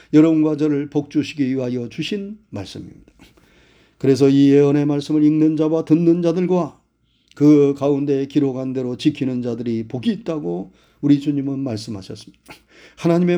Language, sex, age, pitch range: Korean, male, 40-59, 135-180 Hz